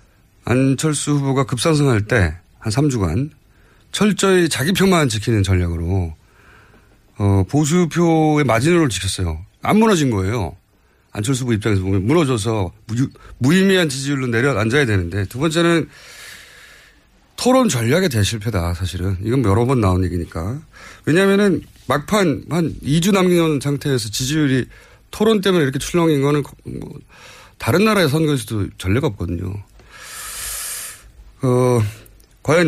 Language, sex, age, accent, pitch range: Korean, male, 30-49, native, 105-155 Hz